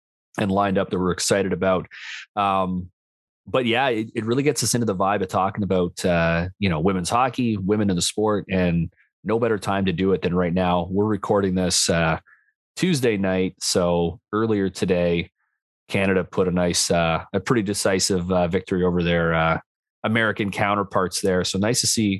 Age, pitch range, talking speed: 30-49, 90-105 Hz, 185 wpm